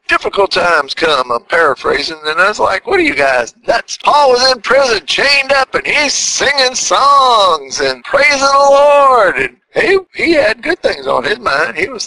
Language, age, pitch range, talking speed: English, 50-69, 215-335 Hz, 195 wpm